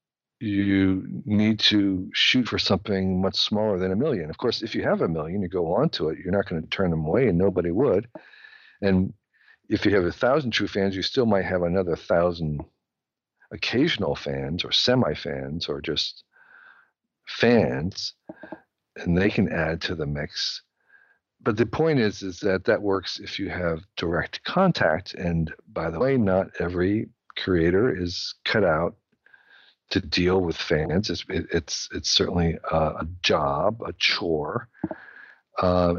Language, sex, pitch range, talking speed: English, male, 85-105 Hz, 165 wpm